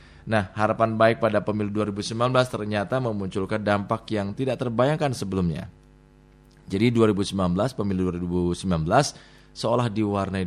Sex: male